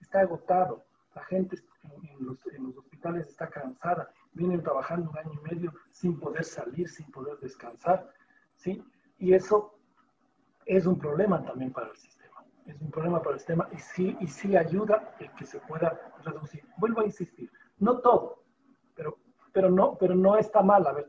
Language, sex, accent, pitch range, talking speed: Spanish, male, Mexican, 155-195 Hz, 175 wpm